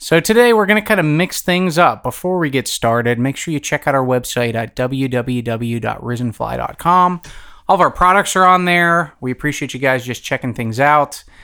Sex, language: male, English